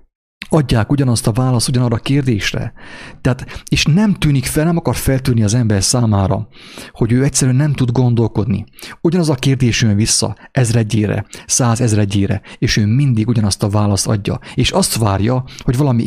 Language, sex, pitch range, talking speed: English, male, 110-130 Hz, 165 wpm